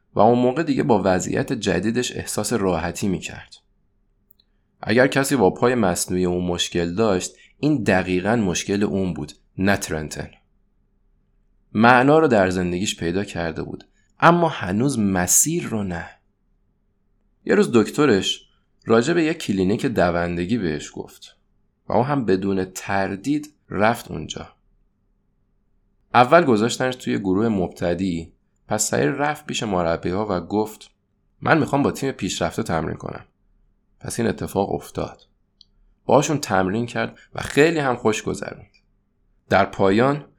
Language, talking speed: Persian, 130 wpm